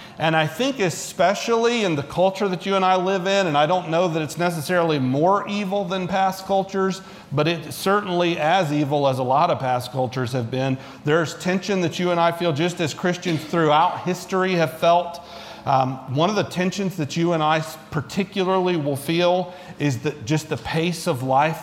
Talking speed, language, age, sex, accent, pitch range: 195 wpm, English, 40-59, male, American, 130-175 Hz